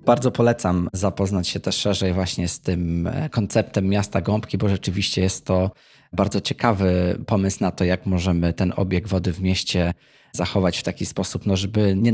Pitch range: 95-115 Hz